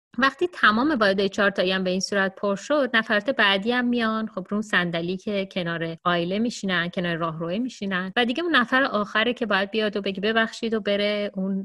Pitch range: 175-215 Hz